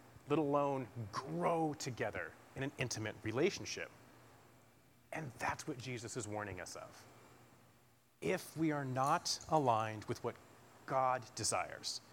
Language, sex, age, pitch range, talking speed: English, male, 30-49, 115-135 Hz, 125 wpm